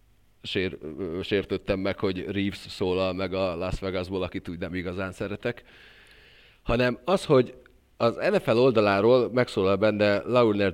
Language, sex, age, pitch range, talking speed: Hungarian, male, 40-59, 85-105 Hz, 135 wpm